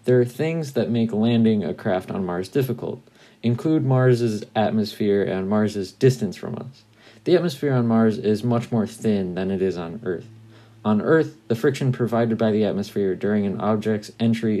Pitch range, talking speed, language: 105-125 Hz, 180 wpm, English